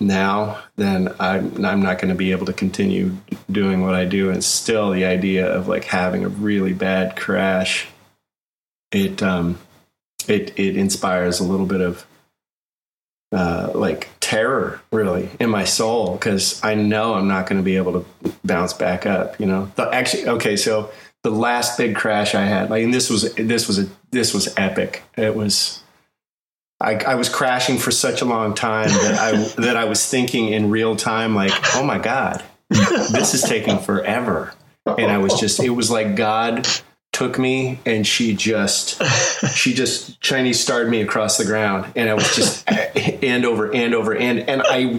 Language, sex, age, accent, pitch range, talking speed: English, male, 30-49, American, 95-115 Hz, 180 wpm